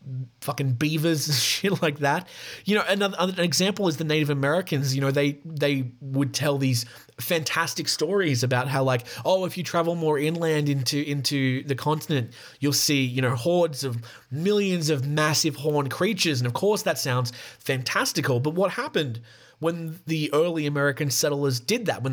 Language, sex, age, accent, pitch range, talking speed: English, male, 30-49, Australian, 135-175 Hz, 175 wpm